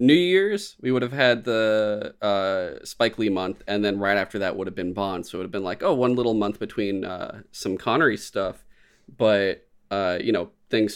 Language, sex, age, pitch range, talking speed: English, male, 30-49, 95-115 Hz, 220 wpm